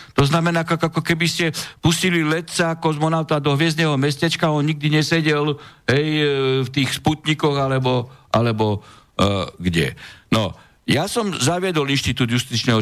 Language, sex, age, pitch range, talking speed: Slovak, male, 60-79, 120-165 Hz, 125 wpm